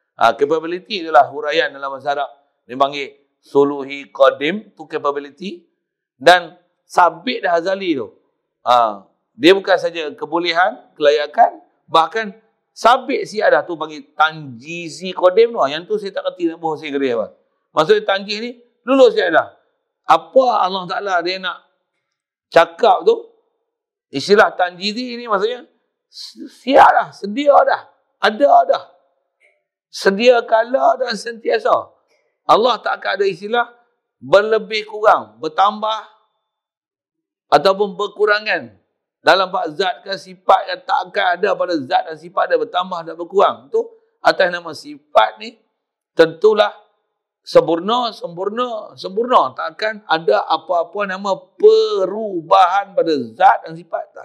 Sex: male